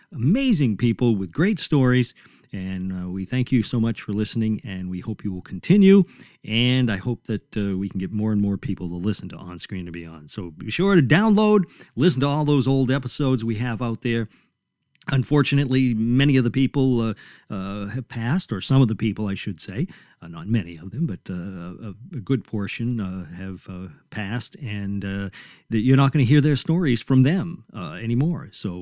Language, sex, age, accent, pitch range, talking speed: English, male, 50-69, American, 105-150 Hz, 210 wpm